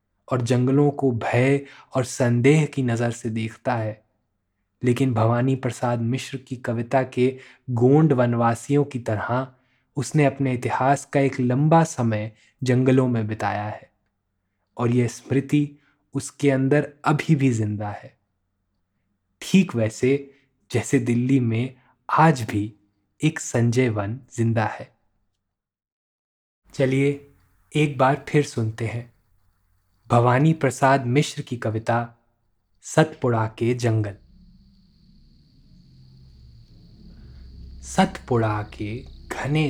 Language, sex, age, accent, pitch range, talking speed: Hindi, male, 20-39, native, 105-135 Hz, 105 wpm